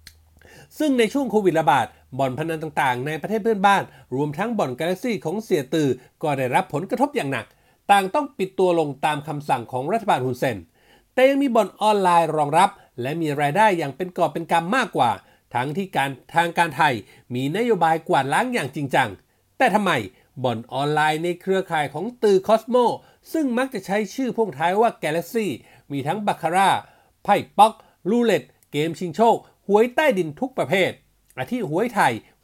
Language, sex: Thai, male